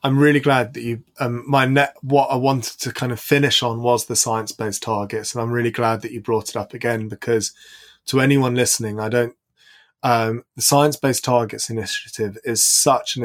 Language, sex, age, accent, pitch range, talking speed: English, male, 20-39, British, 115-145 Hz, 210 wpm